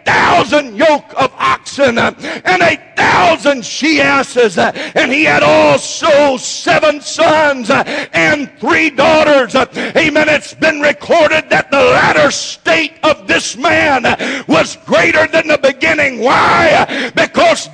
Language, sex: English, male